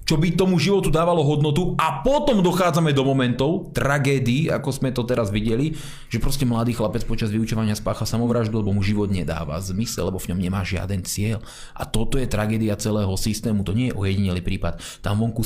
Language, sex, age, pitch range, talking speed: Slovak, male, 30-49, 105-135 Hz, 190 wpm